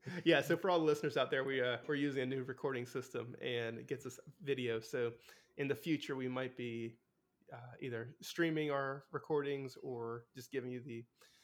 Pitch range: 125-155 Hz